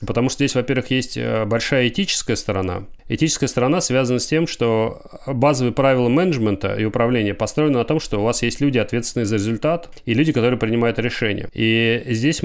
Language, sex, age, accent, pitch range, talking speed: Russian, male, 30-49, native, 110-130 Hz, 180 wpm